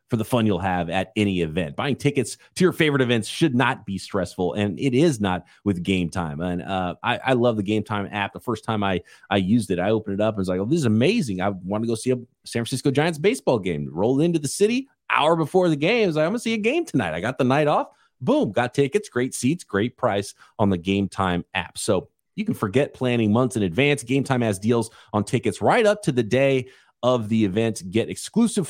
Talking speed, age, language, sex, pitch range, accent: 250 wpm, 30-49, English, male, 110-165 Hz, American